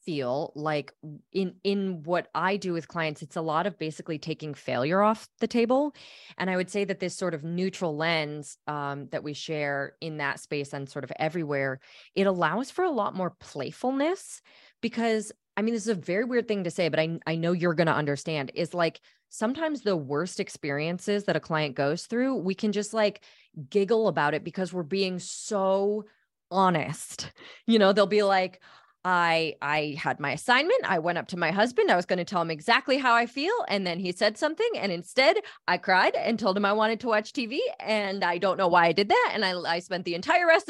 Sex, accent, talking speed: female, American, 215 wpm